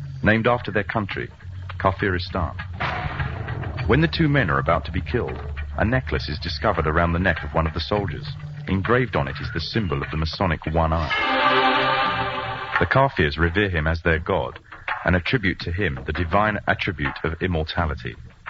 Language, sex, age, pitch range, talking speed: Urdu, male, 40-59, 80-105 Hz, 170 wpm